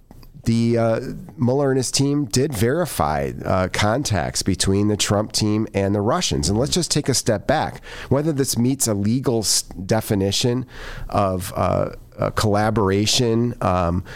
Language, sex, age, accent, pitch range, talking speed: English, male, 40-59, American, 95-120 Hz, 150 wpm